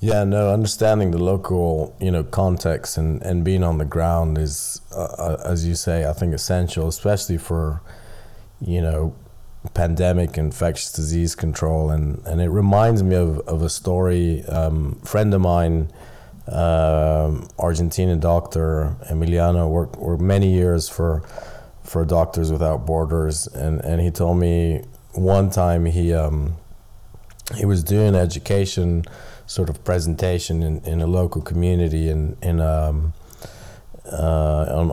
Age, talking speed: 30-49, 140 wpm